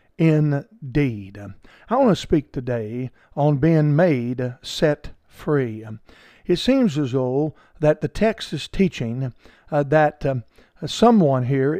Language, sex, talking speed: English, male, 125 wpm